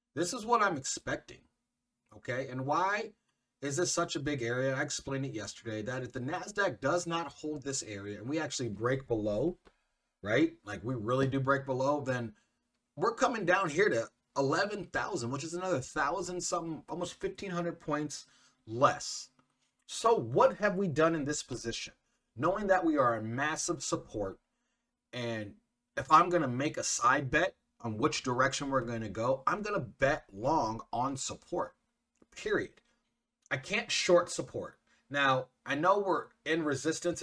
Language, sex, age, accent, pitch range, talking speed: English, male, 30-49, American, 120-175 Hz, 165 wpm